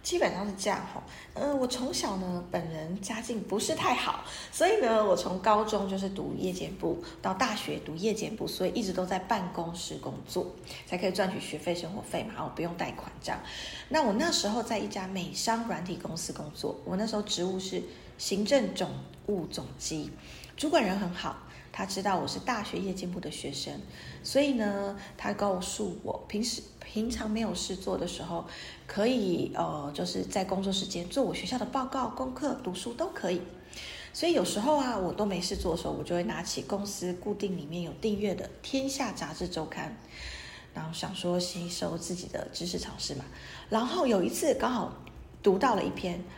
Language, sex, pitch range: Chinese, female, 180-225 Hz